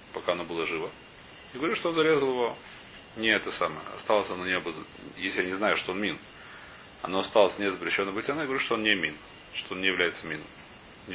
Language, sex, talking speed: Russian, male, 220 wpm